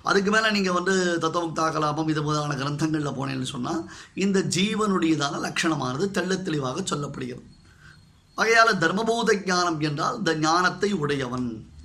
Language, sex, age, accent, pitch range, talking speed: Tamil, male, 20-39, native, 135-170 Hz, 110 wpm